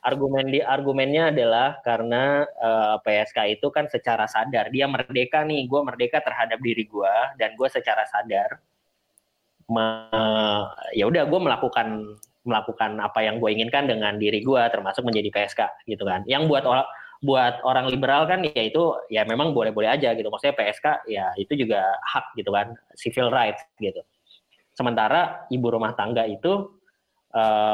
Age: 20-39